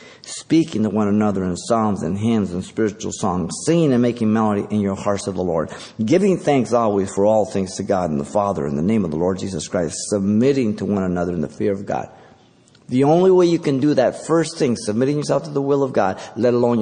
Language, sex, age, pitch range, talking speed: English, male, 50-69, 105-135 Hz, 240 wpm